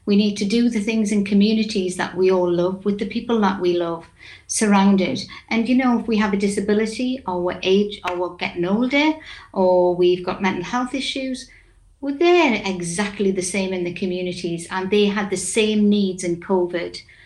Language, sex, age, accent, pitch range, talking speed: English, female, 60-79, British, 185-220 Hz, 195 wpm